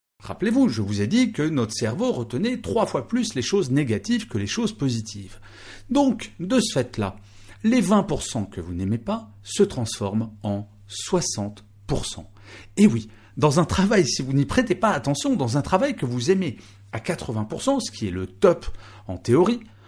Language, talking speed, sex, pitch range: French, 180 wpm, male, 100-140 Hz